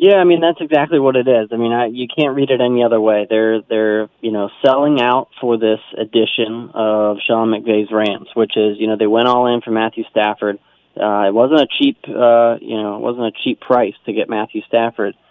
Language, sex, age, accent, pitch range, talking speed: English, male, 20-39, American, 110-135 Hz, 230 wpm